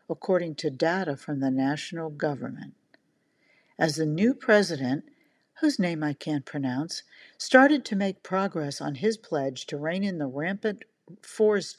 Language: English